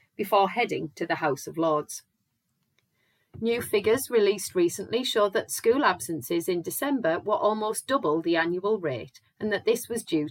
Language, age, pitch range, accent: English, 30-49, 160-225 Hz, British